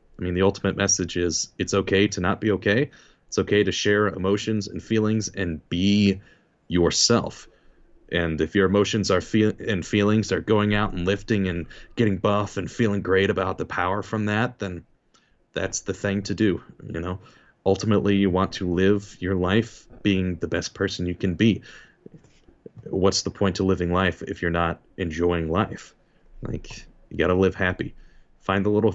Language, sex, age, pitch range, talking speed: English, male, 30-49, 90-110 Hz, 180 wpm